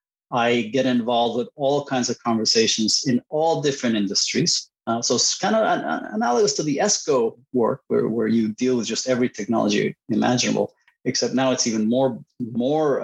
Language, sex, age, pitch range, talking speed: English, male, 30-49, 110-140 Hz, 180 wpm